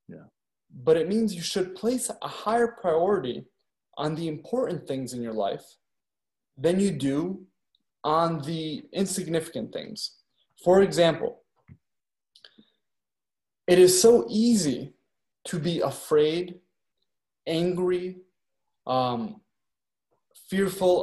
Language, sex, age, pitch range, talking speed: English, male, 20-39, 145-185 Hz, 100 wpm